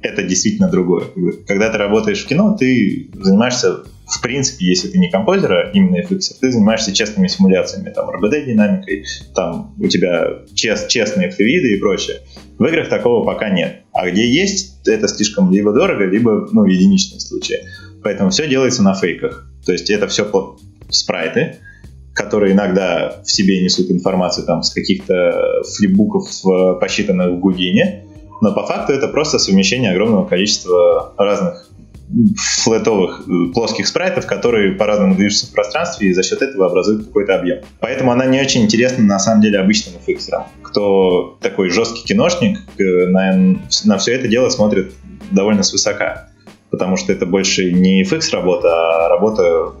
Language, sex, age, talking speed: Russian, male, 20-39, 155 wpm